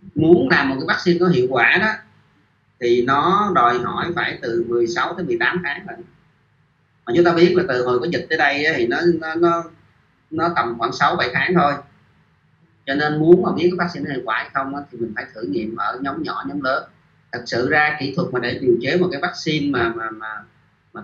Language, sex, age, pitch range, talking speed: Vietnamese, male, 30-49, 125-175 Hz, 220 wpm